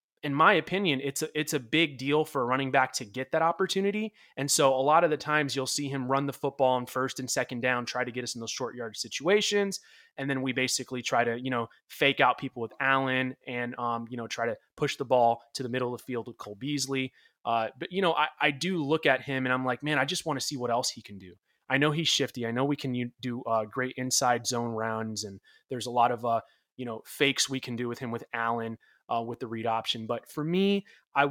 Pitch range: 120-150 Hz